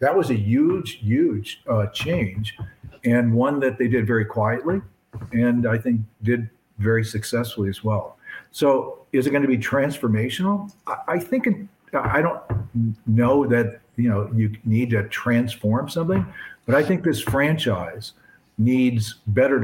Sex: male